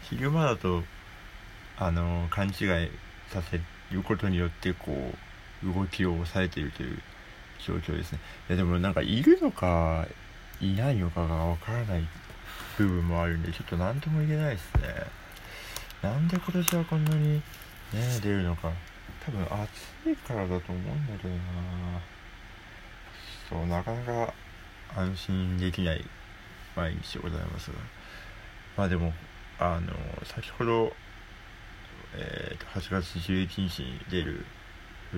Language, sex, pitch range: Japanese, male, 85-100 Hz